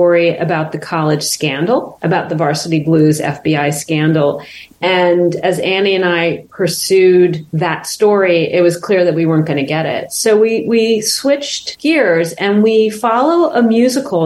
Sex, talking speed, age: female, 160 wpm, 30-49